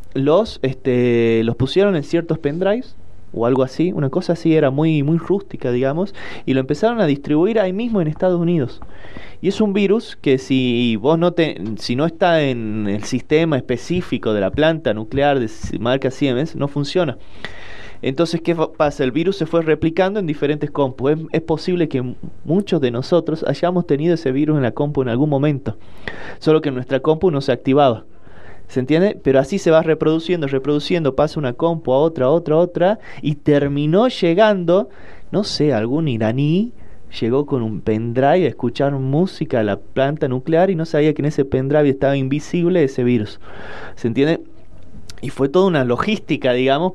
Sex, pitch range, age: male, 125-170 Hz, 20-39